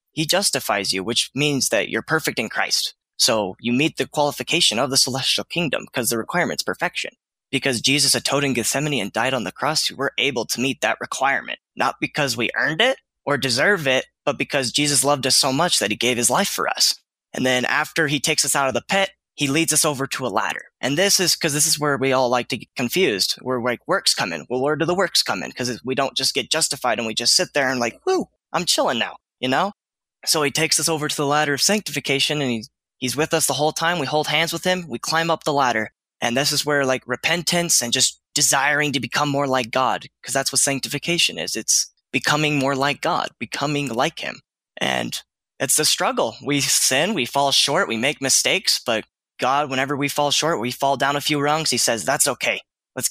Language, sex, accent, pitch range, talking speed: English, male, American, 130-150 Hz, 230 wpm